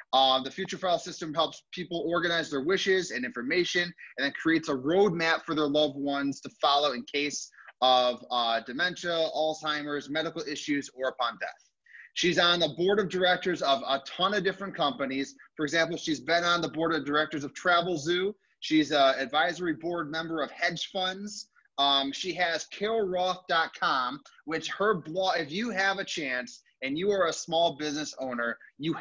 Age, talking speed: 30-49, 175 wpm